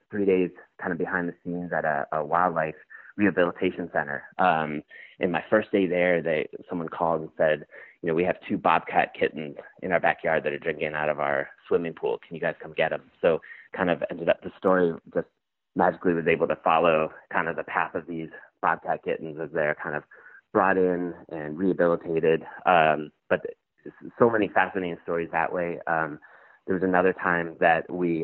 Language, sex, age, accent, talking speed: English, male, 30-49, American, 195 wpm